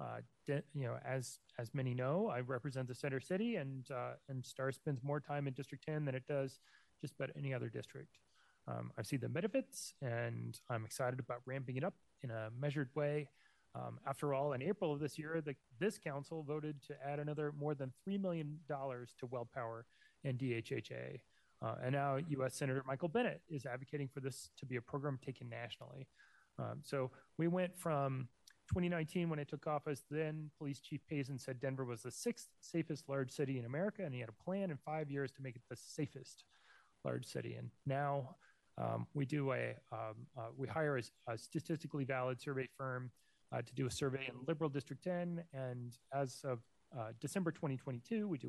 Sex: male